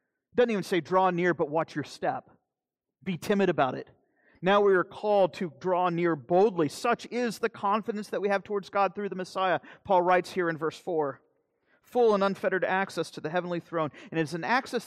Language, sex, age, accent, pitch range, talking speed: English, male, 40-59, American, 135-185 Hz, 210 wpm